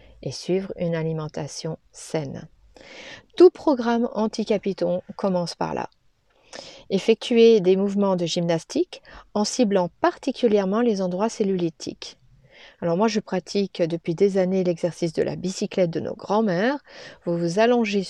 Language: French